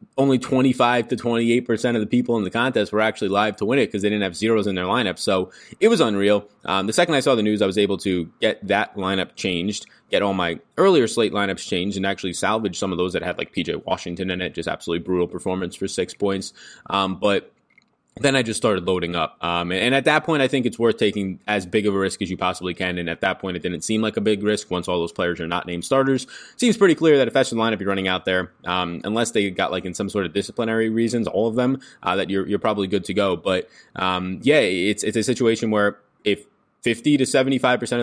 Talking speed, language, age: 255 wpm, English, 20-39